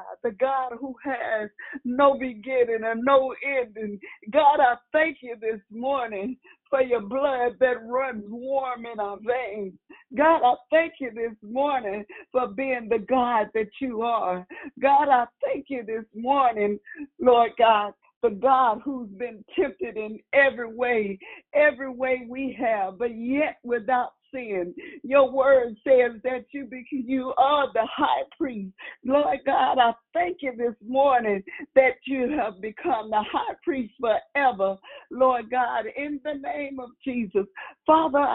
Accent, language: American, English